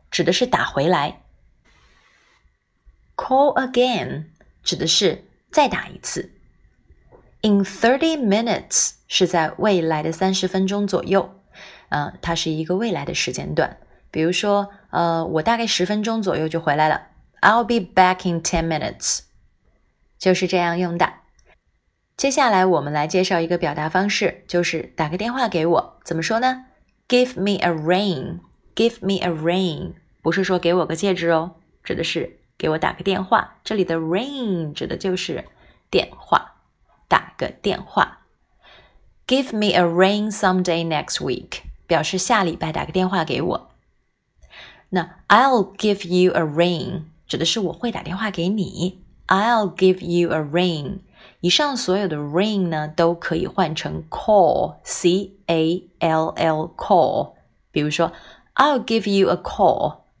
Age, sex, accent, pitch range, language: 20-39, female, native, 165-200 Hz, Chinese